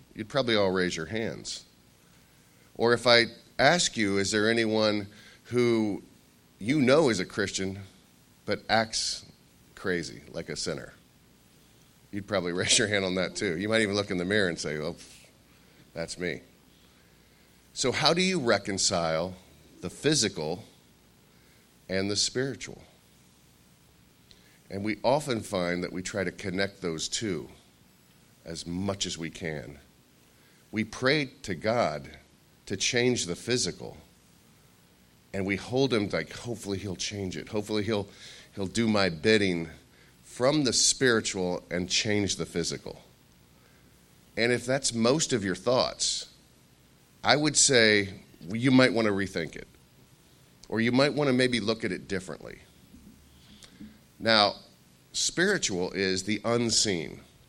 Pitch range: 85-115 Hz